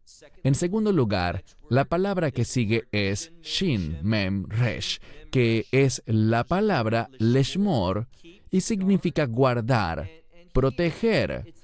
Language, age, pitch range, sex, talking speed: English, 40-59, 110-155 Hz, male, 95 wpm